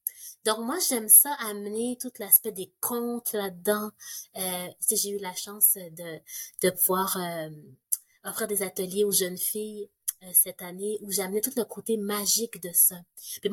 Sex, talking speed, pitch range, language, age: female, 175 wpm, 185-230 Hz, French, 30-49